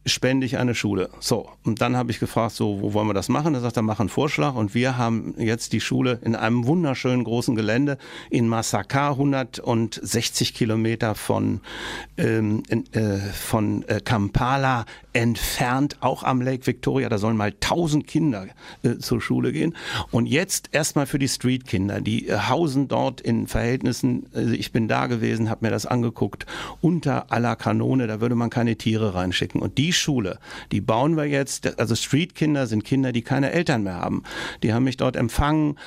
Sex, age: male, 60-79